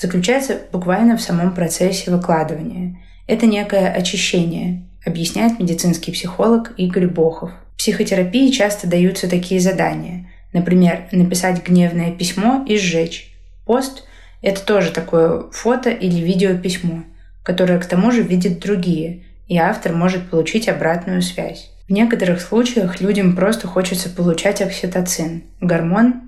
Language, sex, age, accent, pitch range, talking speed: Russian, female, 20-39, native, 170-195 Hz, 125 wpm